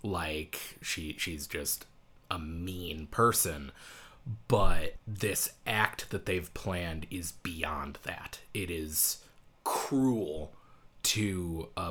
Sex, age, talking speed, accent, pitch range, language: male, 30-49, 105 wpm, American, 85-110 Hz, English